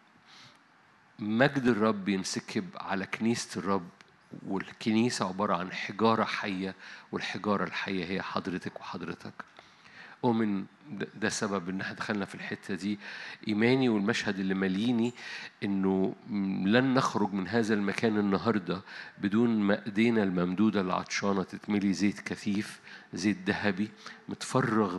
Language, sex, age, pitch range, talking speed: Arabic, male, 50-69, 95-110 Hz, 110 wpm